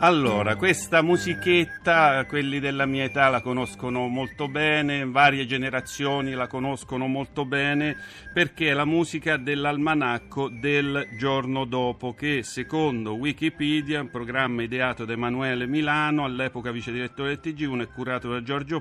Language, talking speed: Italian, 135 wpm